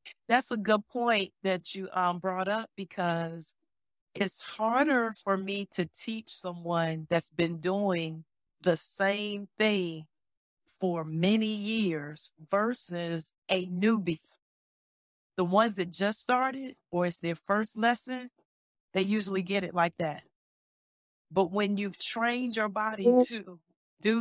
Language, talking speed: English, 130 wpm